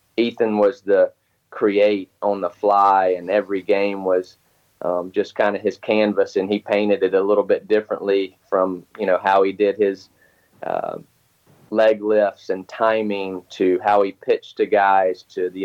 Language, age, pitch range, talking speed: English, 30-49, 95-110 Hz, 175 wpm